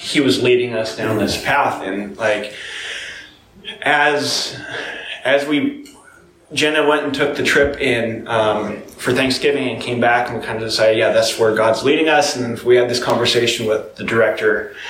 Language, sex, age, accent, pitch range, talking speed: English, male, 30-49, American, 115-145 Hz, 175 wpm